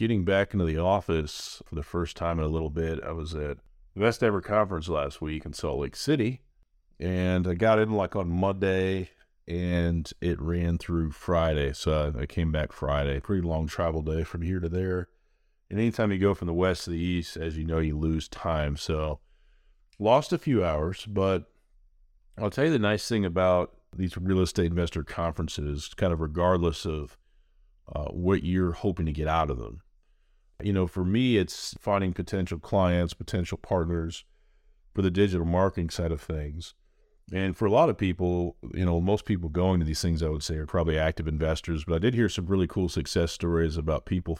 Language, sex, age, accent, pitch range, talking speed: English, male, 40-59, American, 80-95 Hz, 200 wpm